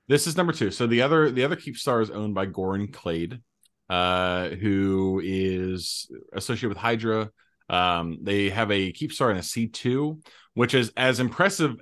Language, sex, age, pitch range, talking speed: English, male, 30-49, 95-120 Hz, 175 wpm